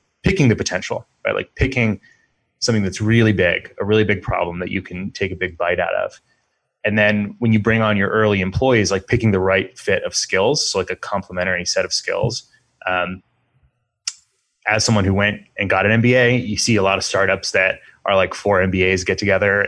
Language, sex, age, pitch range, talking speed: English, male, 20-39, 95-120 Hz, 205 wpm